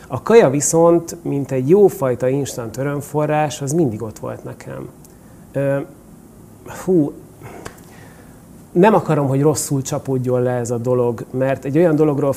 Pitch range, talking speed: 125-150 Hz, 130 wpm